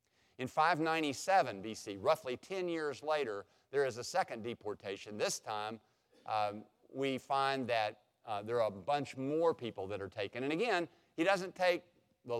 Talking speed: 165 wpm